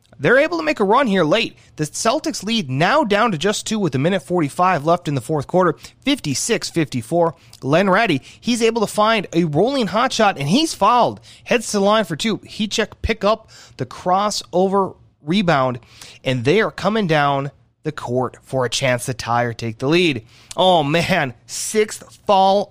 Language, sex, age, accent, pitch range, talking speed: English, male, 30-49, American, 130-200 Hz, 190 wpm